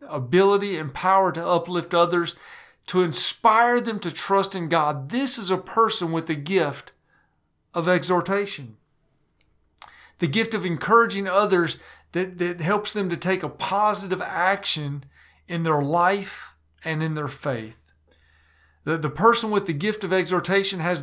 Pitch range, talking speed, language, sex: 155-195 Hz, 150 wpm, English, male